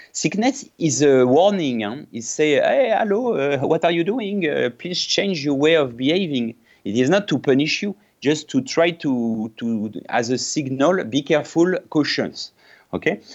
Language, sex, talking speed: English, male, 175 wpm